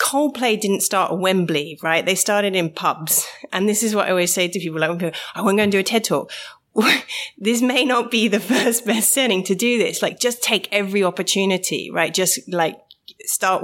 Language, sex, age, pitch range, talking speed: English, female, 30-49, 165-205 Hz, 215 wpm